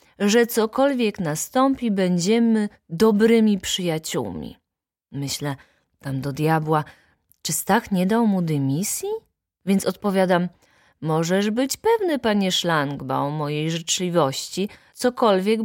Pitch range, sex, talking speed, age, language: 170-230 Hz, female, 100 wpm, 20-39, Polish